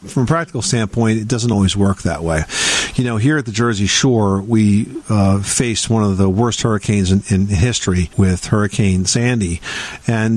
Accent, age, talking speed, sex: American, 50-69, 185 wpm, male